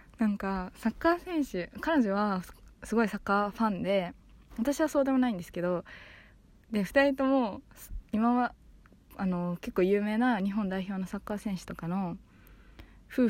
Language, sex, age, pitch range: Japanese, female, 20-39, 185-240 Hz